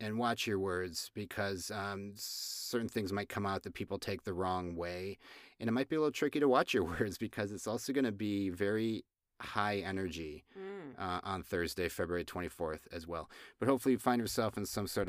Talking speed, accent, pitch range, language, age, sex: 205 wpm, American, 90-110 Hz, English, 30-49, male